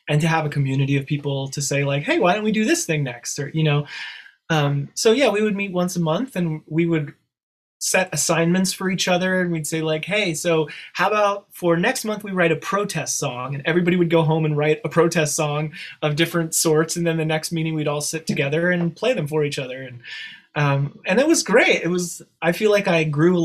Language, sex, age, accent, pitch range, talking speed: English, male, 20-39, American, 150-180 Hz, 245 wpm